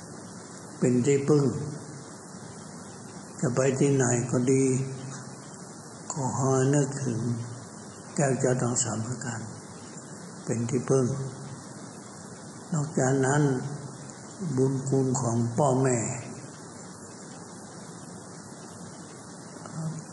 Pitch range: 120-140 Hz